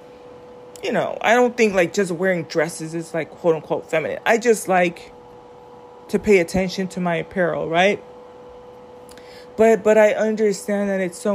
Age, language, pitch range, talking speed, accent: 20-39, English, 165-225 Hz, 160 wpm, American